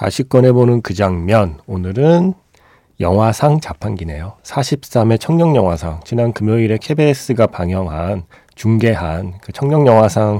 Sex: male